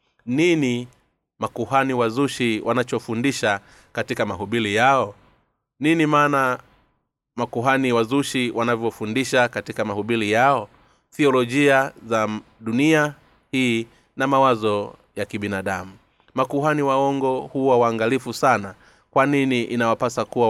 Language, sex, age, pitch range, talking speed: Swahili, male, 30-49, 110-140 Hz, 95 wpm